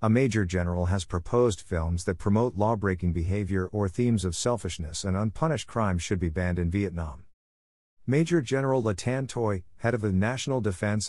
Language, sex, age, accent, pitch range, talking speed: English, male, 50-69, American, 90-115 Hz, 175 wpm